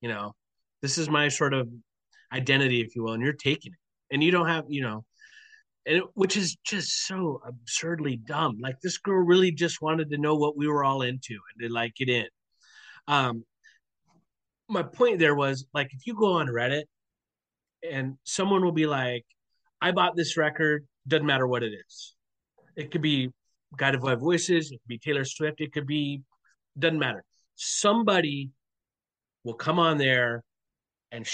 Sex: male